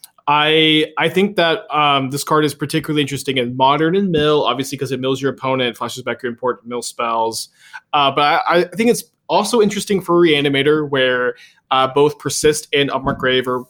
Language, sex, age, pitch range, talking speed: English, male, 20-39, 125-155 Hz, 195 wpm